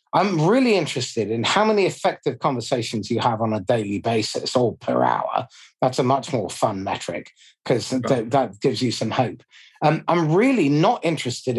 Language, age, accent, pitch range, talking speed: English, 40-59, British, 125-185 Hz, 180 wpm